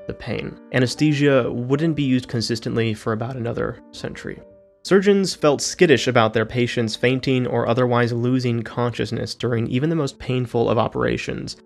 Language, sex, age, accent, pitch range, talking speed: English, male, 20-39, American, 110-130 Hz, 150 wpm